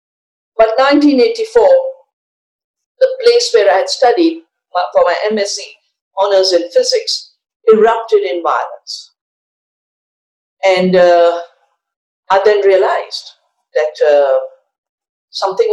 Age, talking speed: 50-69, 95 wpm